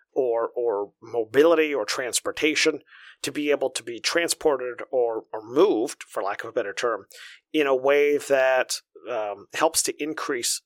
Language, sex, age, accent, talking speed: English, male, 40-59, American, 160 wpm